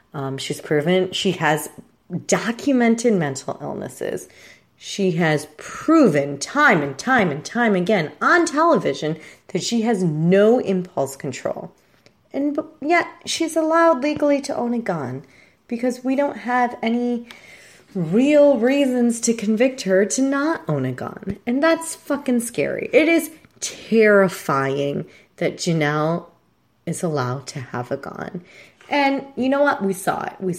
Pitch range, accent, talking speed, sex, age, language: 150-250 Hz, American, 140 wpm, female, 30-49, English